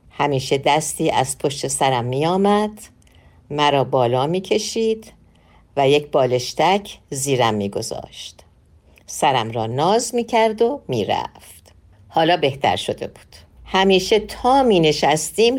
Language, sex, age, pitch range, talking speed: Persian, female, 50-69, 135-205 Hz, 110 wpm